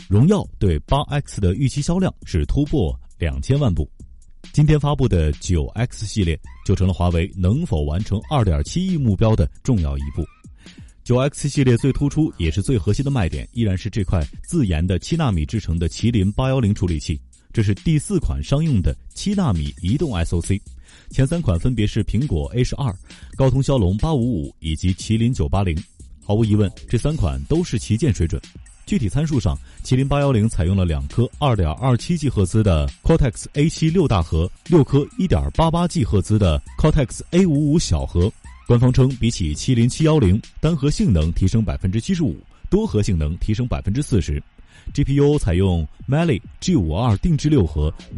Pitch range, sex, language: 85-135 Hz, male, Chinese